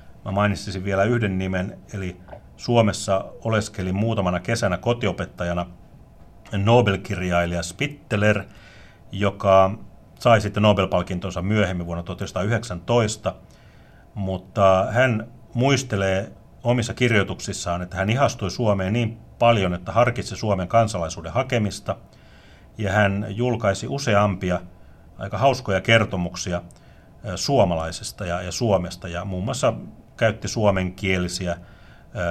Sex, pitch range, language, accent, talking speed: male, 90-105 Hz, Finnish, native, 95 wpm